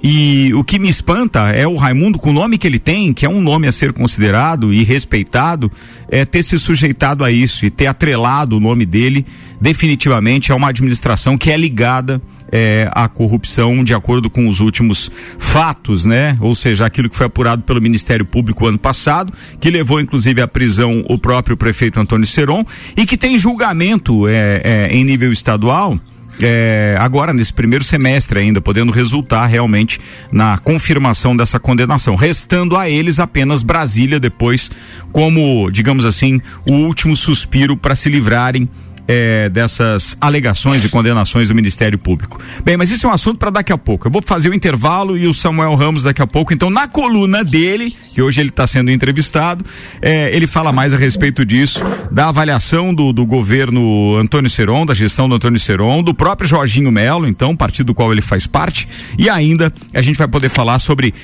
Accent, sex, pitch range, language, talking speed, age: Brazilian, male, 115-155 Hz, Portuguese, 185 wpm, 50-69